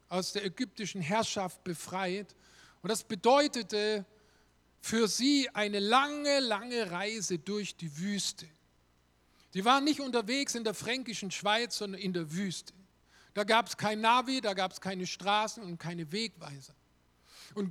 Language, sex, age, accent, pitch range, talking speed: German, male, 50-69, German, 185-245 Hz, 145 wpm